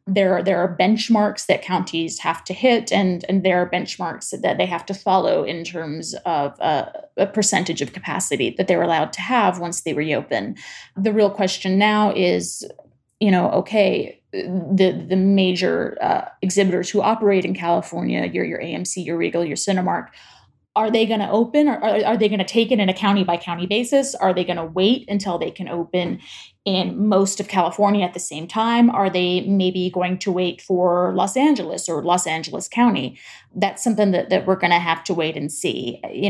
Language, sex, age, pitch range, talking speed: English, female, 20-39, 180-210 Hz, 200 wpm